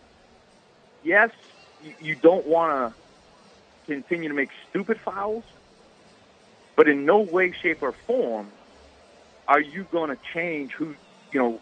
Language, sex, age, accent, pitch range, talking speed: English, male, 30-49, American, 125-170 Hz, 130 wpm